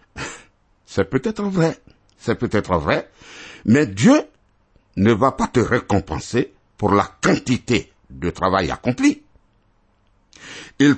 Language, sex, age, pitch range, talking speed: French, male, 60-79, 95-140 Hz, 110 wpm